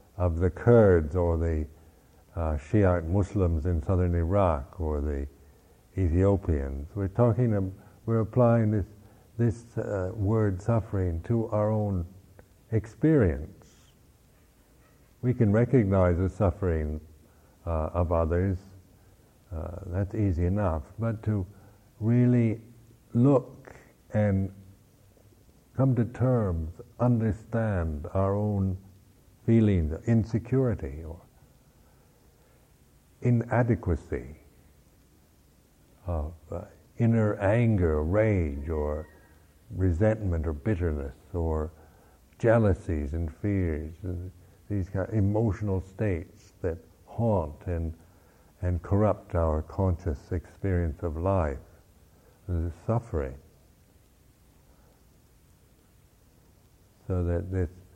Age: 60-79